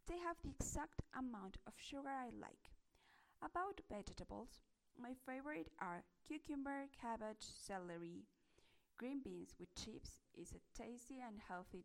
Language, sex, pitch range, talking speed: English, female, 180-275 Hz, 130 wpm